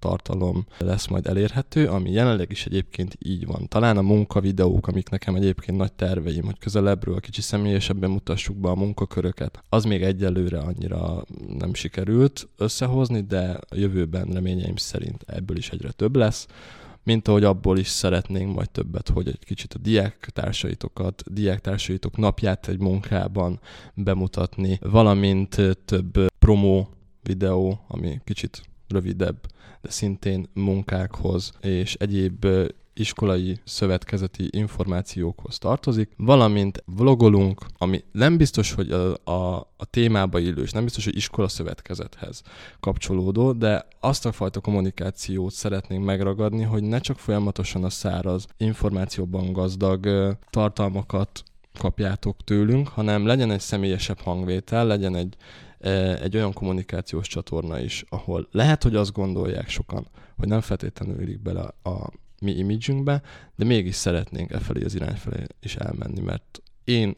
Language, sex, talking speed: Hungarian, male, 135 wpm